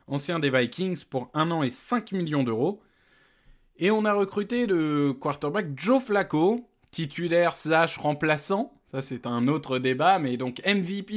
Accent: French